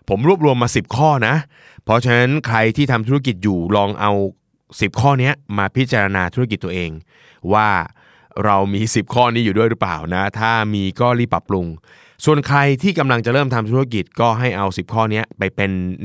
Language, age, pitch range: Thai, 20-39, 100-125 Hz